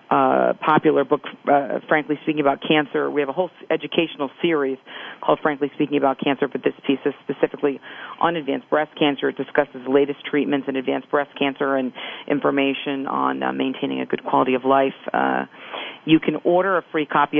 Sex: female